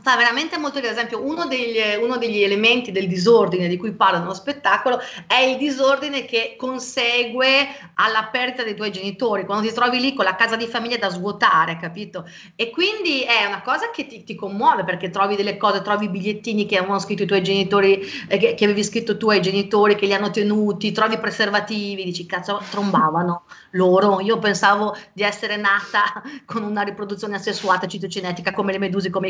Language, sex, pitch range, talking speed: Italian, female, 195-245 Hz, 185 wpm